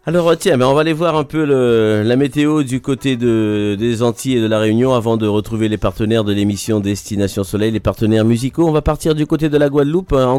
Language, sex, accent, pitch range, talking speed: French, male, French, 115-150 Hz, 245 wpm